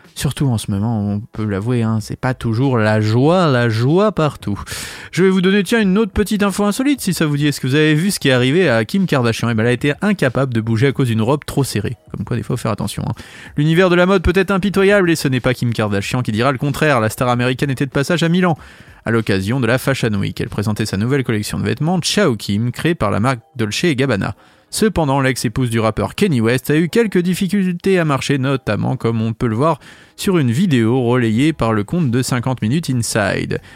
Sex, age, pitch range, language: male, 30-49, 115-170 Hz, French